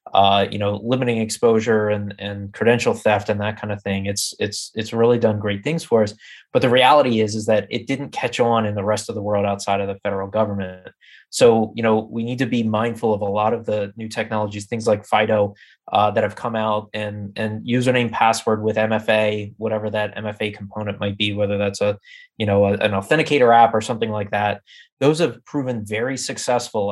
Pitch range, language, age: 100-115 Hz, English, 20-39